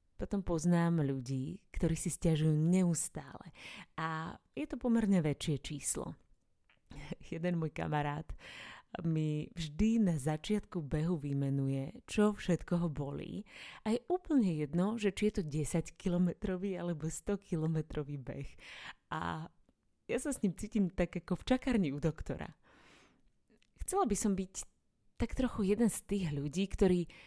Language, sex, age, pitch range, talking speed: Slovak, female, 30-49, 150-200 Hz, 135 wpm